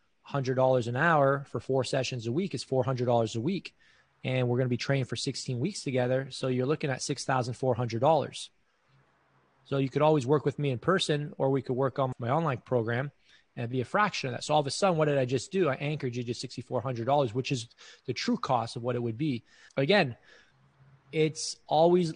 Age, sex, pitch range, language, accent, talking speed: 20-39, male, 130-150 Hz, English, American, 215 wpm